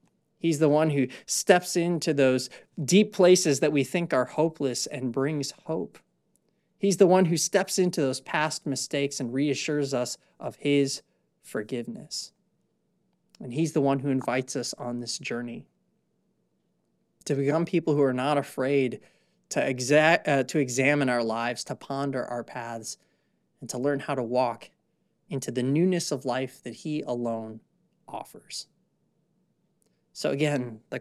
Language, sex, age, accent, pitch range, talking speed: English, male, 30-49, American, 125-155 Hz, 150 wpm